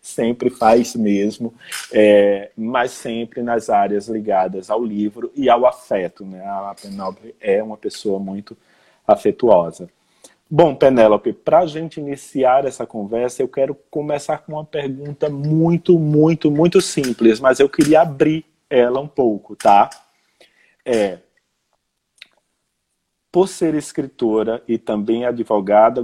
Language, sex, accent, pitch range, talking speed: Portuguese, male, Brazilian, 115-155 Hz, 125 wpm